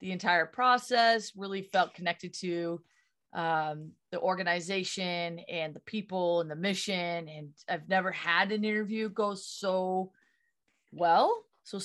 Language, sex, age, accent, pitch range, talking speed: English, female, 30-49, American, 160-210 Hz, 130 wpm